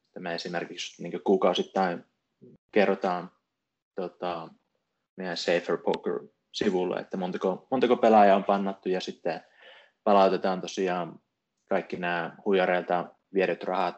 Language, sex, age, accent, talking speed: Finnish, male, 20-39, native, 110 wpm